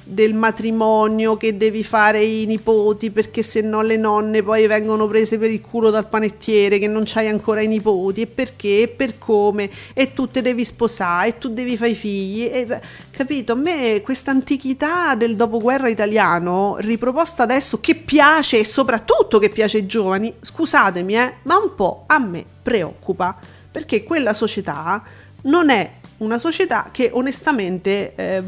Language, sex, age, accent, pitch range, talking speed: Italian, female, 40-59, native, 210-250 Hz, 165 wpm